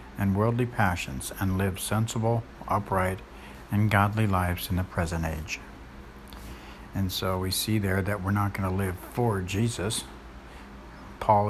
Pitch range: 70-100 Hz